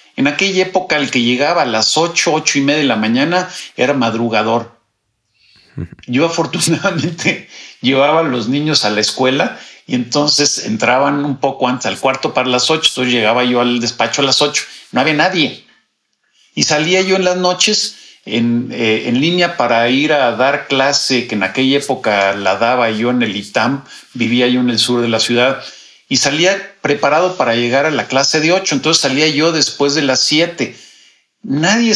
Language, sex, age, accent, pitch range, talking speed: Spanish, male, 50-69, Mexican, 120-155 Hz, 185 wpm